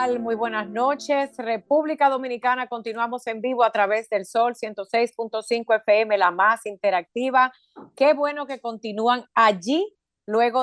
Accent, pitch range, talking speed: American, 195-240 Hz, 130 wpm